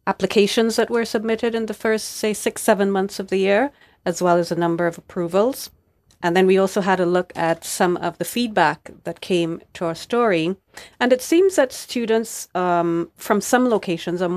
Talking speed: 200 wpm